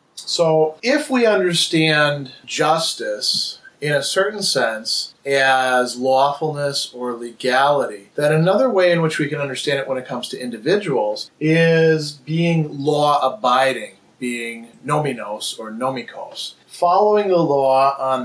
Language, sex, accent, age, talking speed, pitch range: English, male, American, 30-49, 125 wpm, 130-165 Hz